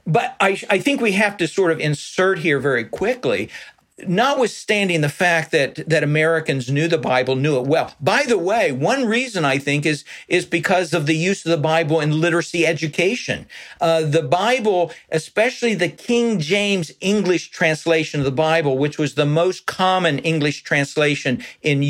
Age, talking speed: 50-69, 175 wpm